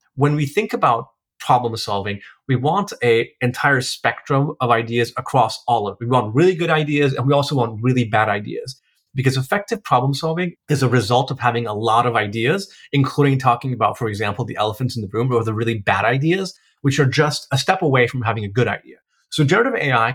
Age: 30-49